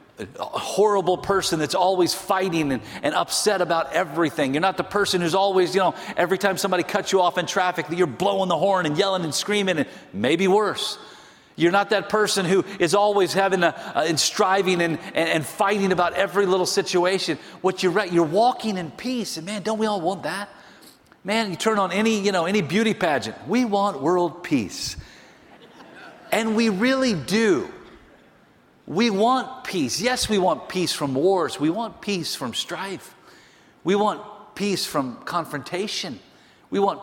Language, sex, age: English, male, 40-59